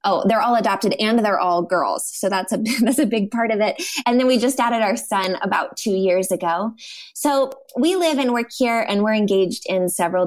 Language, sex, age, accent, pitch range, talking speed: English, female, 20-39, American, 175-230 Hz, 230 wpm